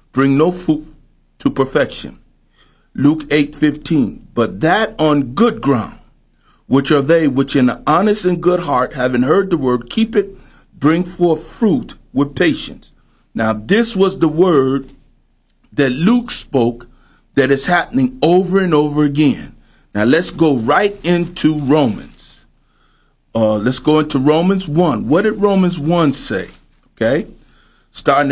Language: English